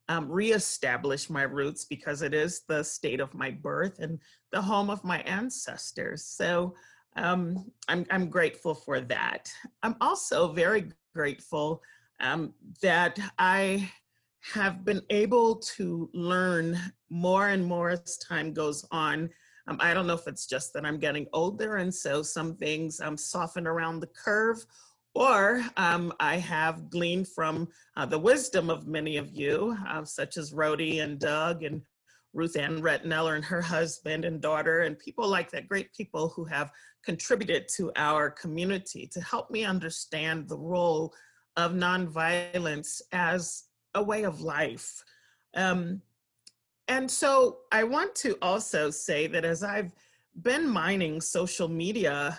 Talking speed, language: 150 wpm, English